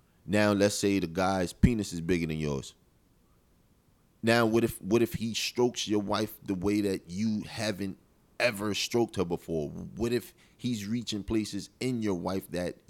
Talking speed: 170 wpm